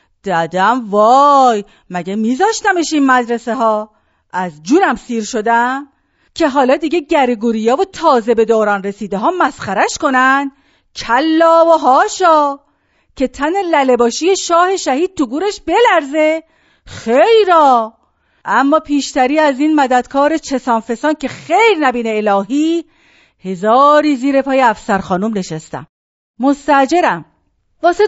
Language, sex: Persian, female